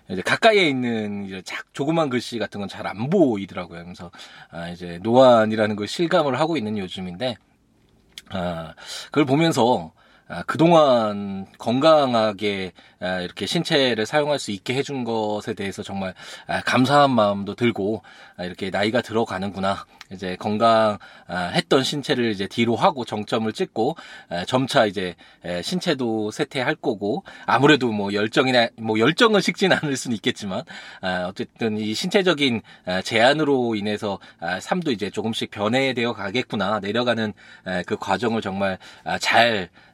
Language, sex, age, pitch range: Korean, male, 20-39, 95-130 Hz